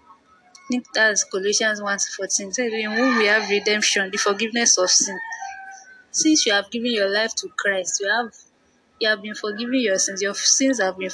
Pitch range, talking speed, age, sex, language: 200-255 Hz, 180 wpm, 20-39, female, English